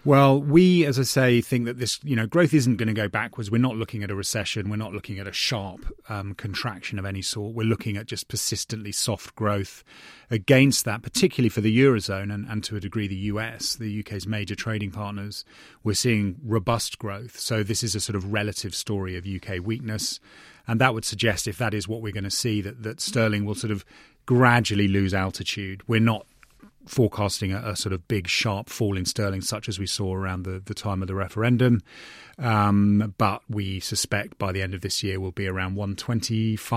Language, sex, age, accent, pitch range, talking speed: English, male, 30-49, British, 100-115 Hz, 210 wpm